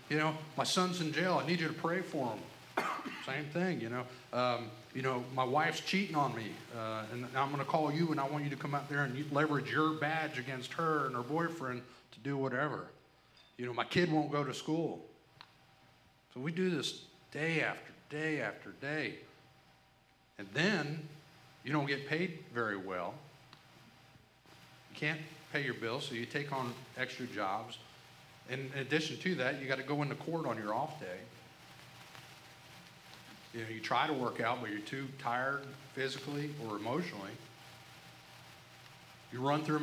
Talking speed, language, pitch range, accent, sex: 180 wpm, English, 120-150 Hz, American, male